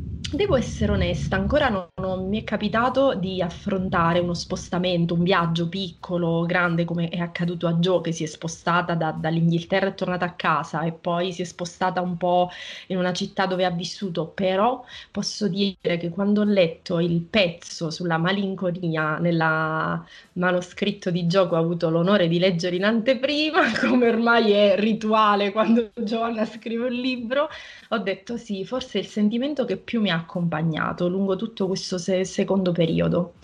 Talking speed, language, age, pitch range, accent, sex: 165 wpm, Italian, 20-39, 175-215 Hz, native, female